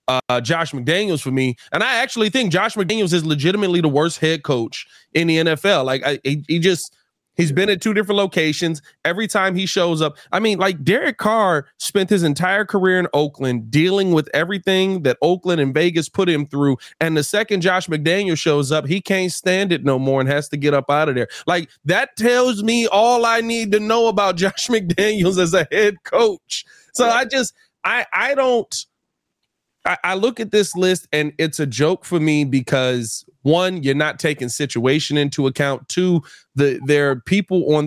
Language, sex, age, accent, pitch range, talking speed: English, male, 20-39, American, 140-200 Hz, 195 wpm